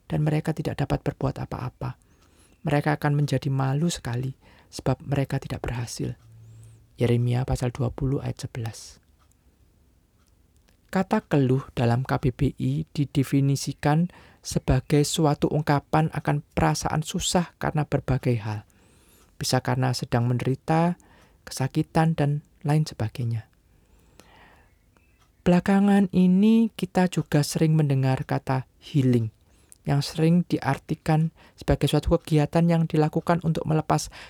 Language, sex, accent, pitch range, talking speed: Indonesian, male, native, 115-155 Hz, 105 wpm